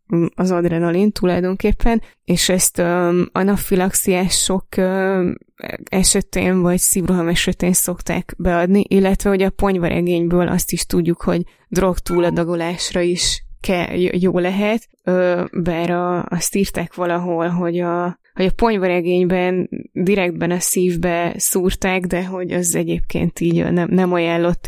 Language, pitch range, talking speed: Hungarian, 175-190 Hz, 120 wpm